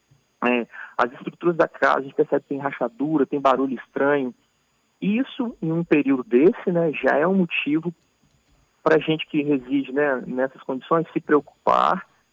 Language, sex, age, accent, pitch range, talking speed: Portuguese, male, 40-59, Brazilian, 130-155 Hz, 160 wpm